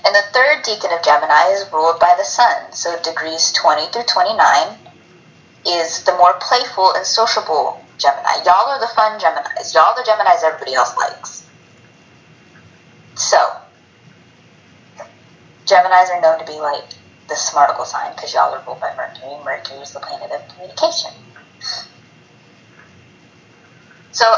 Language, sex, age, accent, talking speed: English, female, 20-39, American, 145 wpm